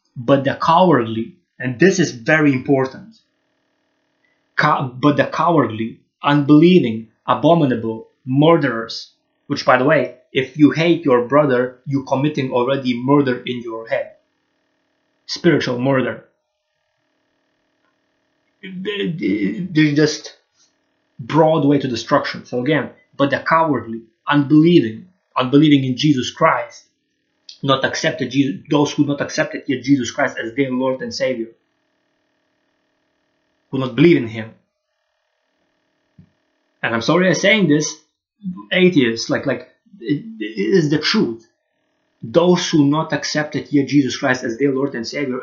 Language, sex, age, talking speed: English, male, 30-49, 130 wpm